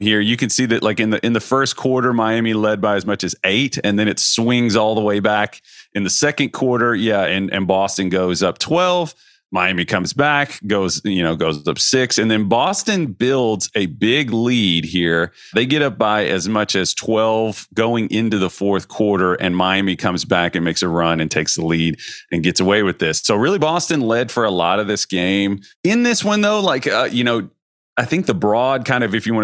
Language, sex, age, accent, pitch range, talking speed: English, male, 40-59, American, 95-125 Hz, 230 wpm